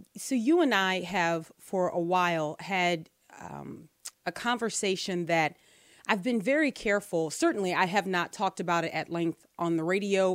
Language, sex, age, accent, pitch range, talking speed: English, female, 30-49, American, 175-210 Hz, 170 wpm